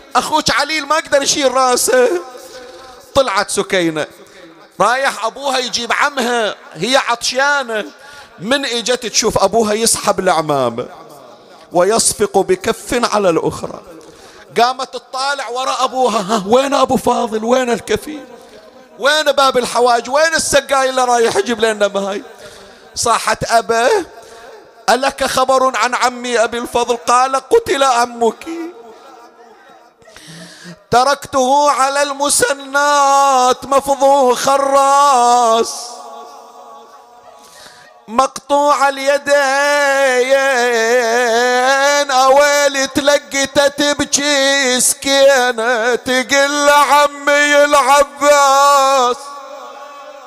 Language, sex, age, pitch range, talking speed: Arabic, male, 40-59, 245-285 Hz, 80 wpm